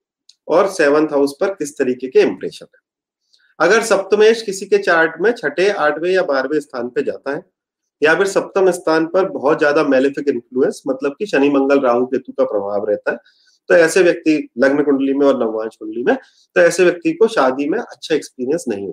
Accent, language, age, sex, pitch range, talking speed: native, Hindi, 30-49, male, 165-265 Hz, 190 wpm